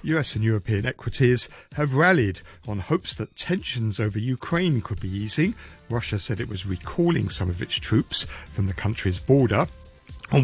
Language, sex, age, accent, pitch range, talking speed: English, male, 50-69, British, 95-130 Hz, 165 wpm